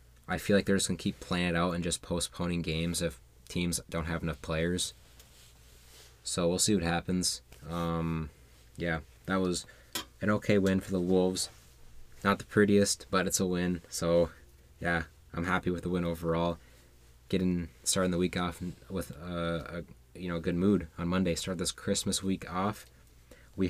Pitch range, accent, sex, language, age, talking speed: 75-90 Hz, American, male, English, 20-39, 175 wpm